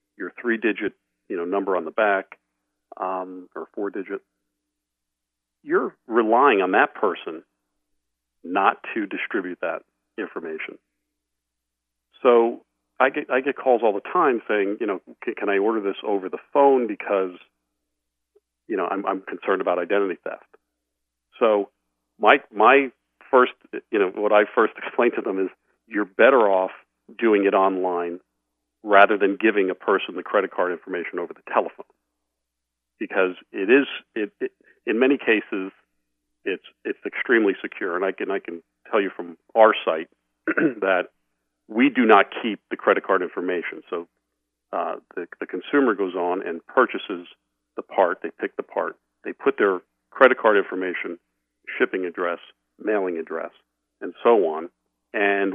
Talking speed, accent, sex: 150 wpm, American, male